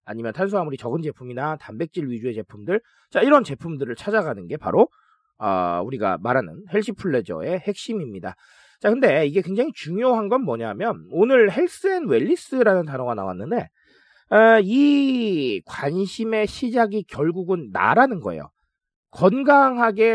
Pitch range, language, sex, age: 165-245 Hz, Korean, male, 40-59